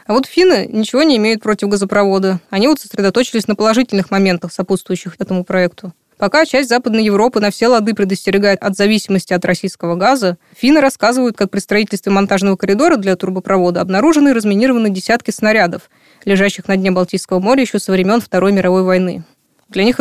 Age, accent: 20-39, native